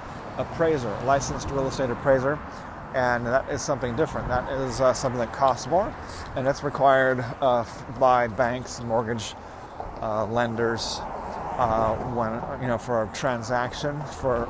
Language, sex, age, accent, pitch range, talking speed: English, male, 30-49, American, 110-135 Hz, 145 wpm